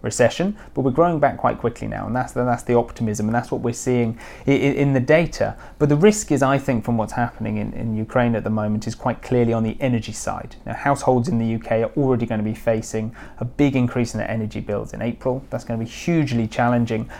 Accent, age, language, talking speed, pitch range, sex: British, 30-49, English, 250 wpm, 110-130 Hz, male